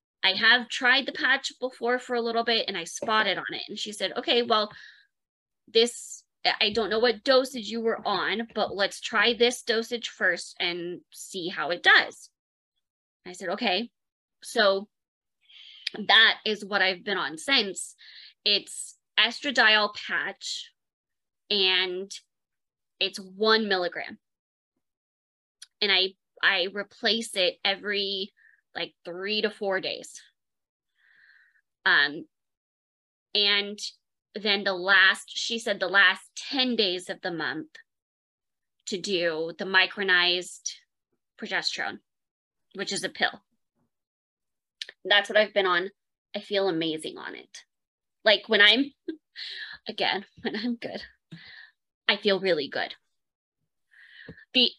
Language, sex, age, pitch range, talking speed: English, female, 20-39, 190-240 Hz, 125 wpm